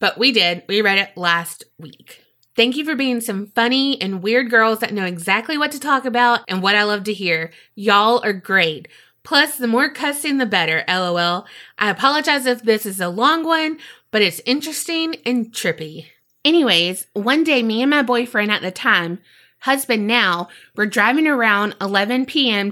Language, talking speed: English, 185 wpm